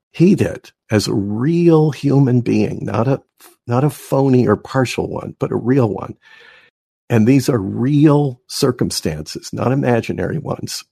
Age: 50-69